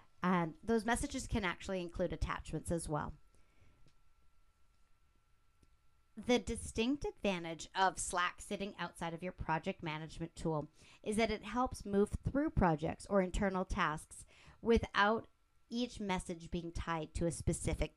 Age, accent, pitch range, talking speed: 40-59, American, 170-230 Hz, 130 wpm